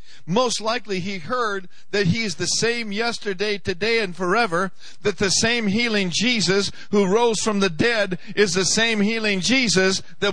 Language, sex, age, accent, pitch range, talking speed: English, male, 50-69, American, 170-225 Hz, 165 wpm